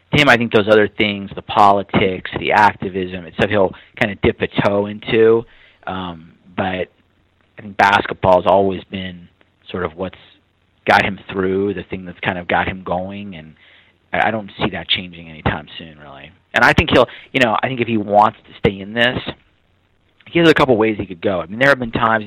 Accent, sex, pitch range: American, male, 90-105 Hz